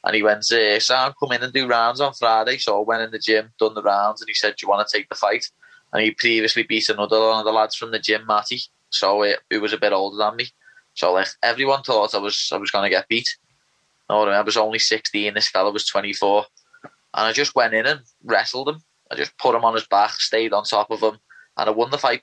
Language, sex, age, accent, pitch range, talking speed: English, male, 20-39, British, 105-120 Hz, 275 wpm